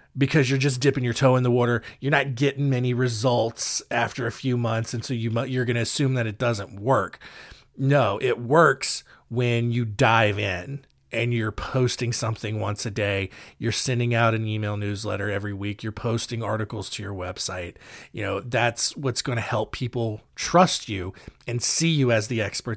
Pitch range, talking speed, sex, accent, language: 115-160 Hz, 190 wpm, male, American, English